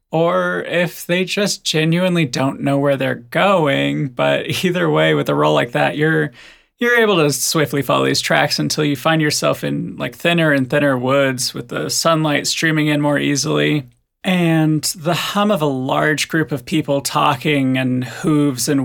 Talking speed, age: 180 wpm, 30-49